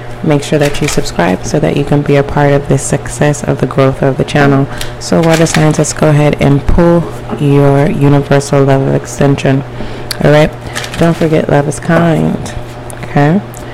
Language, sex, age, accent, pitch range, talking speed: English, female, 30-49, American, 120-150 Hz, 170 wpm